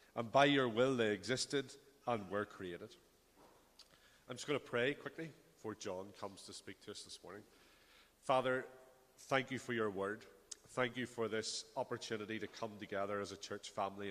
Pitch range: 110-130 Hz